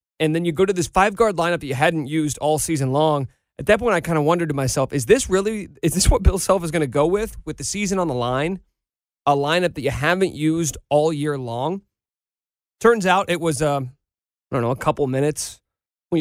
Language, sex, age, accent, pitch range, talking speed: English, male, 30-49, American, 140-175 Hz, 235 wpm